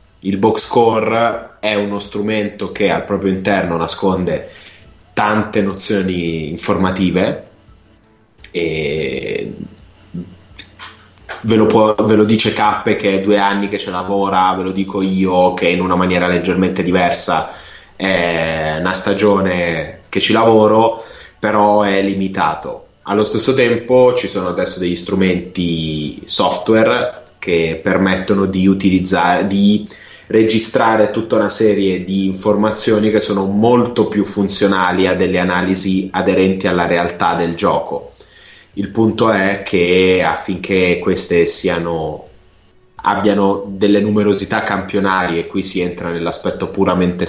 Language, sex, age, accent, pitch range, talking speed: Italian, male, 20-39, native, 90-105 Hz, 125 wpm